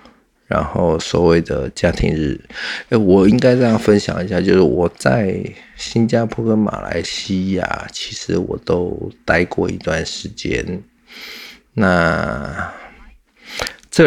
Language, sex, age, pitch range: Chinese, male, 50-69, 80-100 Hz